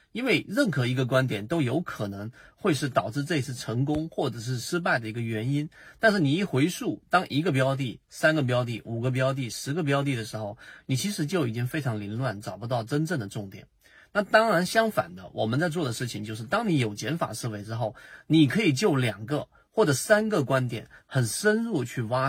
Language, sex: Chinese, male